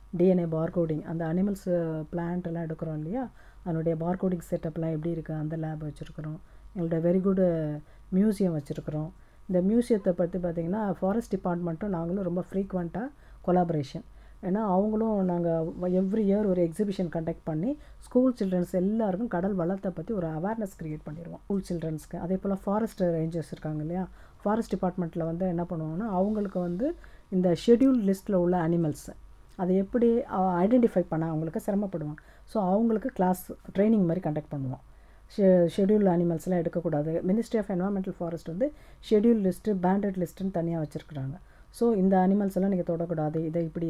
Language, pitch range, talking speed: English, 165-200 Hz, 85 wpm